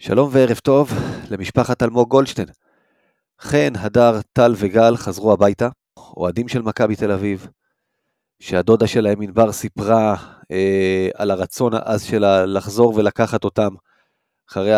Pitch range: 100-120 Hz